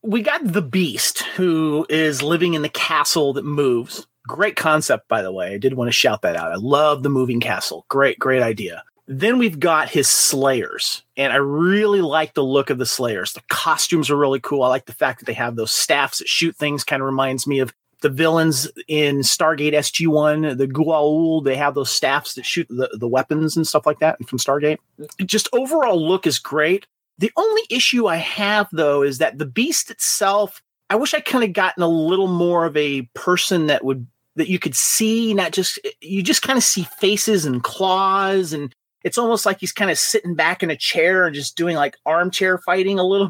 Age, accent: 30-49, American